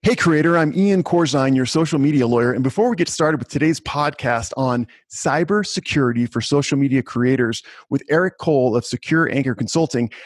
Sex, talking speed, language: male, 175 wpm, English